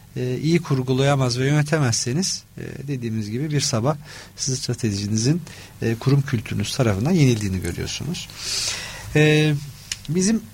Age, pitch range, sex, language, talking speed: 40-59, 120-155 Hz, male, Turkish, 85 wpm